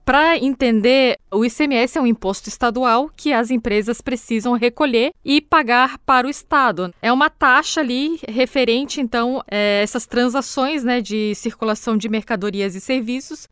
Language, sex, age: Portuguese, female, 10-29